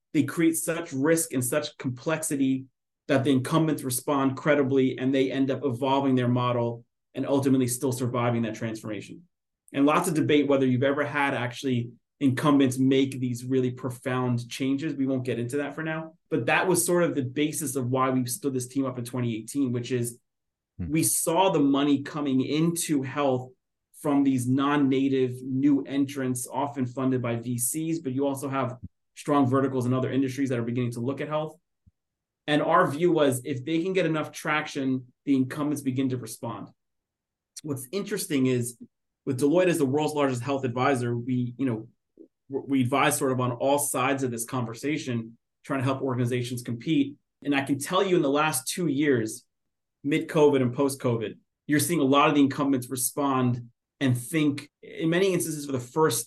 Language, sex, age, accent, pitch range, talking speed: English, male, 30-49, American, 125-145 Hz, 180 wpm